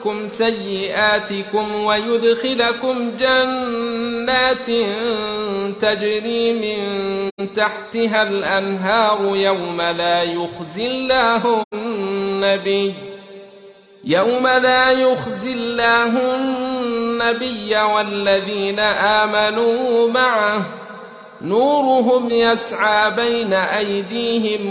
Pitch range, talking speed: 195-235 Hz, 60 wpm